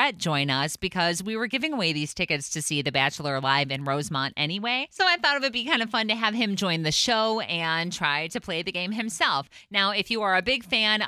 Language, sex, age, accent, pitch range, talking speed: English, female, 30-49, American, 155-210 Hz, 250 wpm